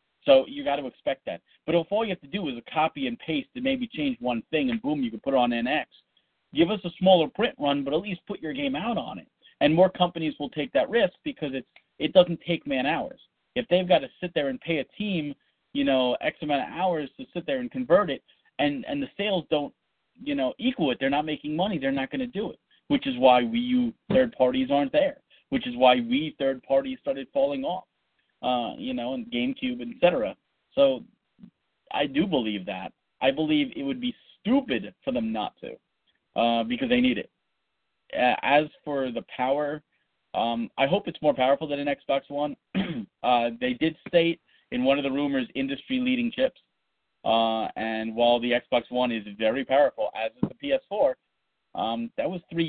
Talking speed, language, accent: 215 wpm, English, American